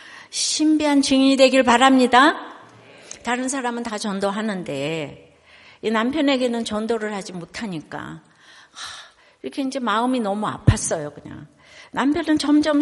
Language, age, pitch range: Korean, 60-79, 195-275 Hz